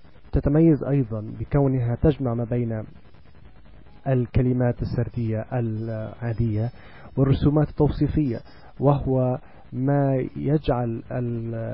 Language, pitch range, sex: Arabic, 110-130 Hz, male